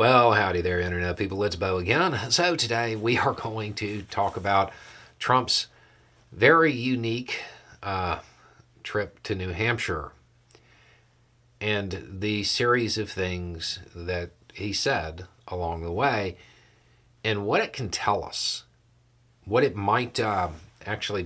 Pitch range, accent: 95-120 Hz, American